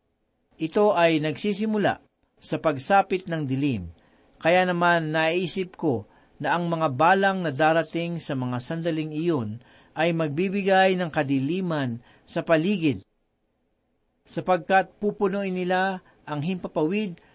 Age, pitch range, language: 50-69, 140-185 Hz, Filipino